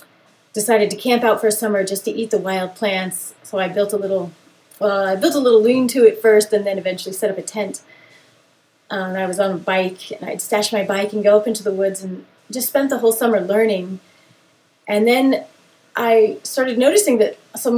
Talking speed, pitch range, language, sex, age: 220 wpm, 190-230 Hz, English, female, 30-49